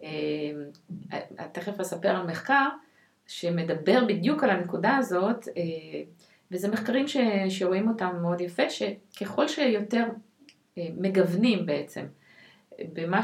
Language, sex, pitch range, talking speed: Hebrew, female, 170-220 Hz, 115 wpm